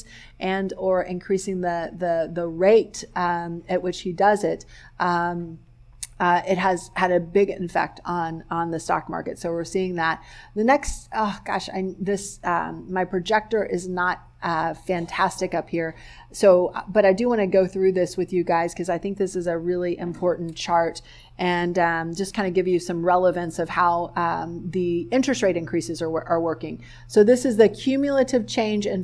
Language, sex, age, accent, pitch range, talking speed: English, female, 30-49, American, 170-195 Hz, 190 wpm